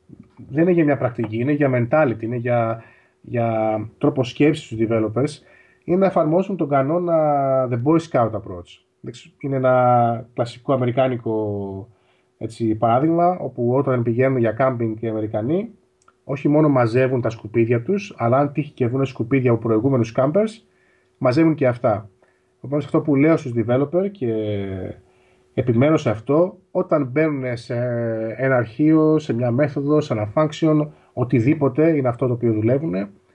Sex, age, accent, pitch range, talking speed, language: male, 20-39, native, 115-150 Hz, 150 wpm, Greek